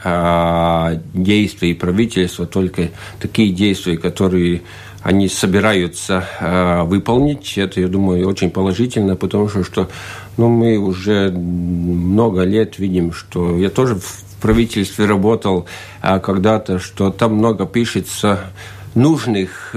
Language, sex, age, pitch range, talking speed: Russian, male, 50-69, 95-110 Hz, 105 wpm